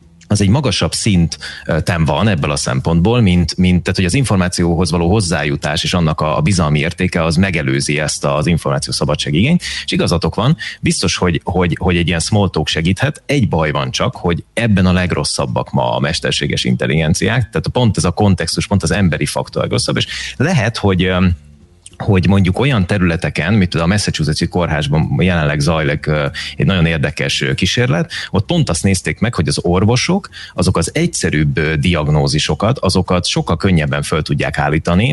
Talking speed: 160 wpm